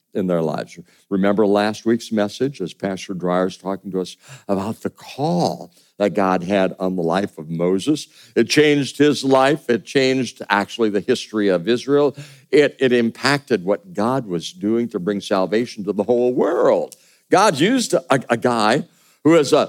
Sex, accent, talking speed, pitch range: male, American, 175 wpm, 100-135 Hz